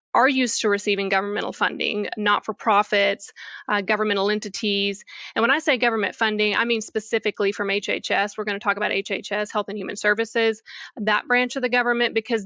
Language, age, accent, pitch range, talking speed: English, 20-39, American, 200-235 Hz, 180 wpm